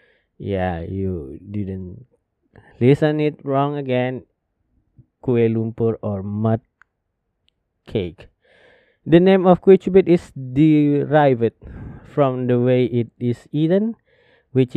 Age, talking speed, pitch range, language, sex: 20-39, 100 wpm, 115-145 Hz, Indonesian, male